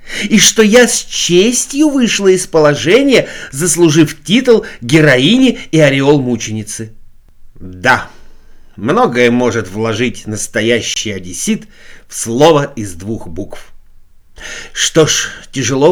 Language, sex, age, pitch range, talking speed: Russian, male, 50-69, 120-195 Hz, 105 wpm